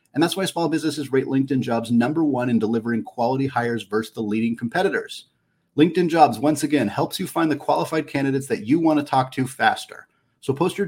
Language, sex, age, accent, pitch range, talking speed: English, male, 30-49, American, 115-150 Hz, 210 wpm